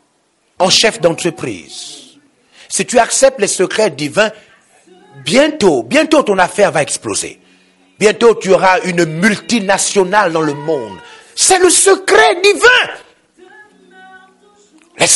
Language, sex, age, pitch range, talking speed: French, male, 50-69, 210-315 Hz, 110 wpm